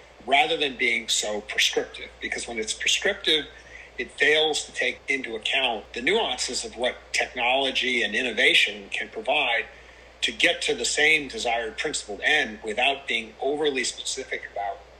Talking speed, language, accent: 150 wpm, English, American